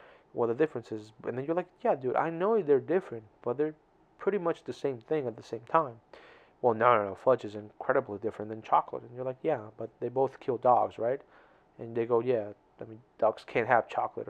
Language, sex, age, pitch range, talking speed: English, male, 20-39, 110-130 Hz, 230 wpm